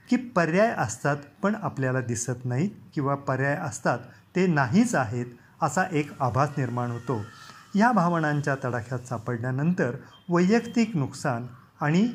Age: 30-49